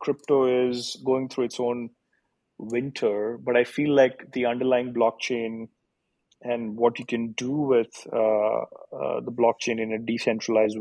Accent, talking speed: Indian, 150 wpm